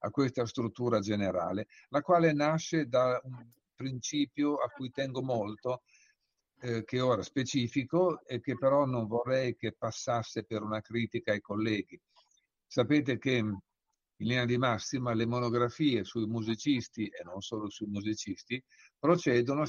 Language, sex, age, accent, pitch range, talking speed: Italian, male, 50-69, native, 110-135 Hz, 140 wpm